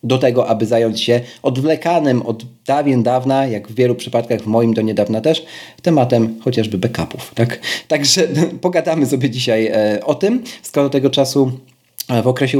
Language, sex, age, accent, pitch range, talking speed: Polish, male, 40-59, native, 115-145 Hz, 150 wpm